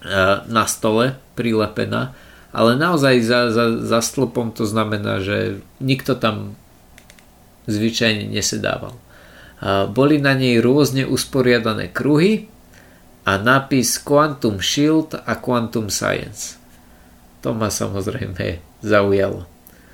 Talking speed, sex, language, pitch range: 100 wpm, male, Slovak, 100-125 Hz